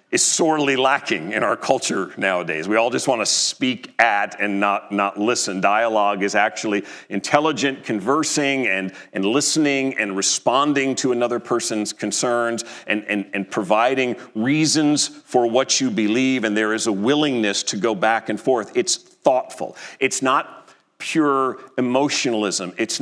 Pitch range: 110-135 Hz